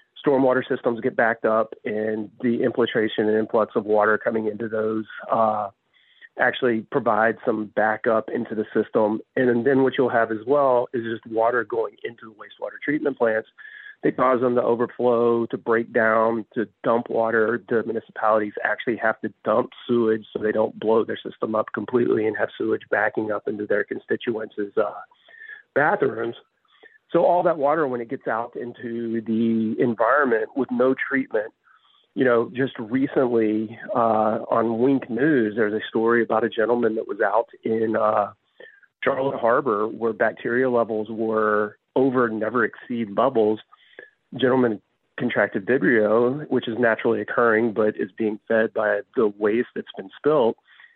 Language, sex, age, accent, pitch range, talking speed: English, male, 40-59, American, 110-135 Hz, 160 wpm